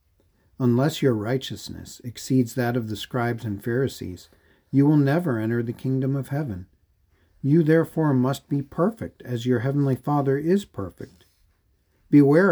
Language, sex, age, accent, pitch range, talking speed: English, male, 50-69, American, 100-140 Hz, 145 wpm